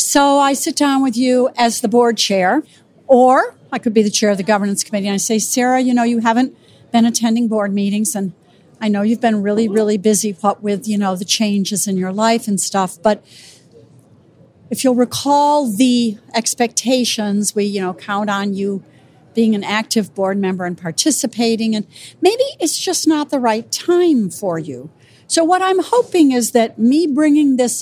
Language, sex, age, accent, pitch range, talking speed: English, female, 60-79, American, 200-270 Hz, 190 wpm